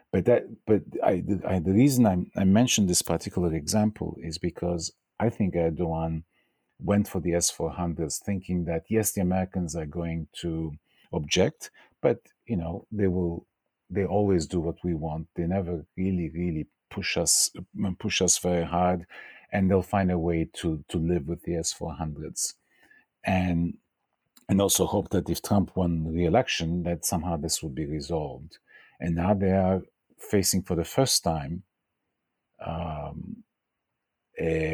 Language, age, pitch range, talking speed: English, 50-69, 80-95 Hz, 160 wpm